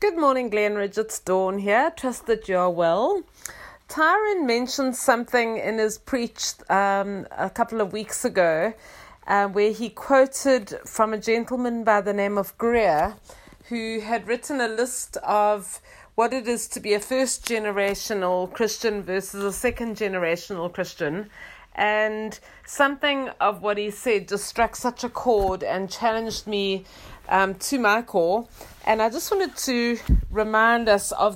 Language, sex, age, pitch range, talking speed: English, female, 30-49, 195-235 Hz, 150 wpm